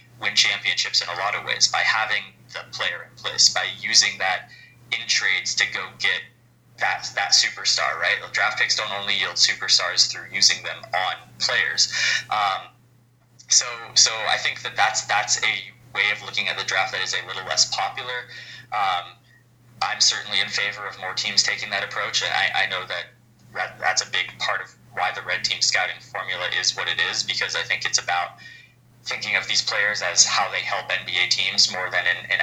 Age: 20-39